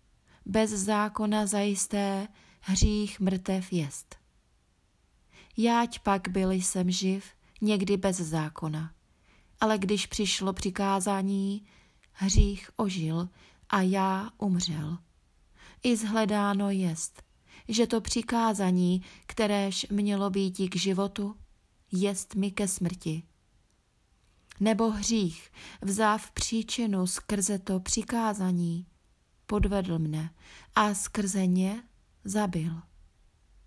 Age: 30-49